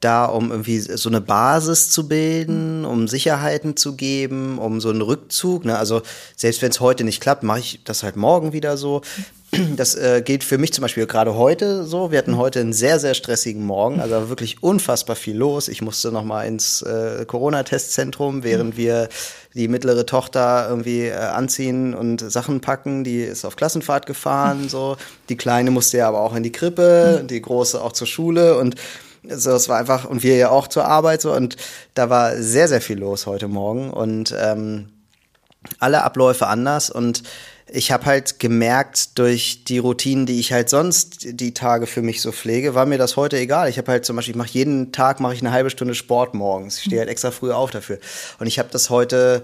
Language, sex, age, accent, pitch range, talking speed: German, male, 30-49, German, 115-135 Hz, 205 wpm